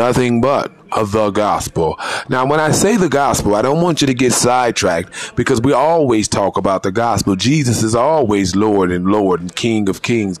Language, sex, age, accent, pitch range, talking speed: English, male, 30-49, American, 105-125 Hz, 200 wpm